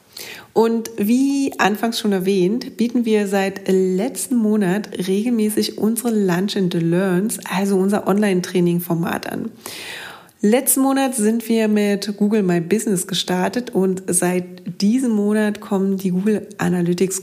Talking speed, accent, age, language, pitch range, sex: 130 wpm, German, 30-49, German, 185-225 Hz, female